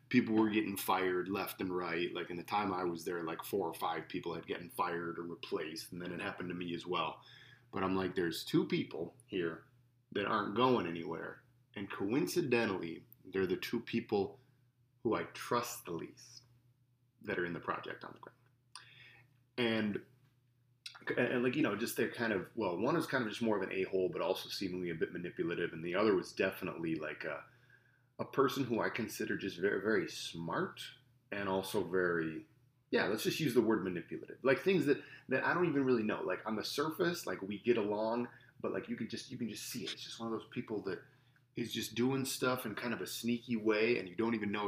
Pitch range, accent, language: 95-125 Hz, American, English